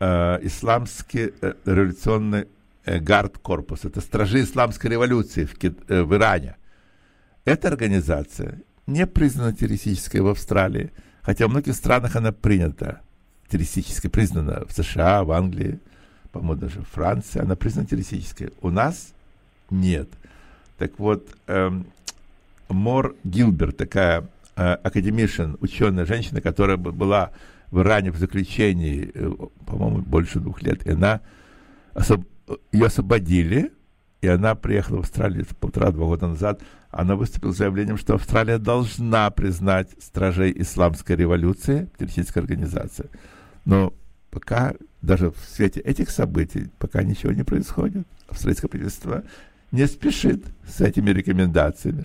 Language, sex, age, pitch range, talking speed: English, male, 60-79, 90-110 Hz, 120 wpm